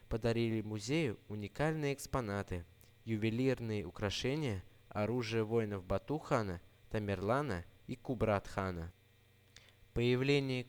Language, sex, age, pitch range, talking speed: Russian, male, 20-39, 105-125 Hz, 75 wpm